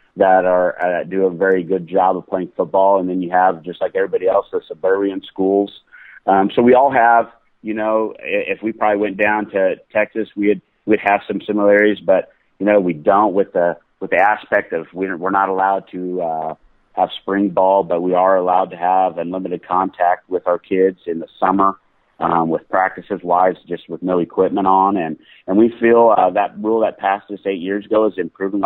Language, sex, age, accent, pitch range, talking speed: English, male, 40-59, American, 95-105 Hz, 210 wpm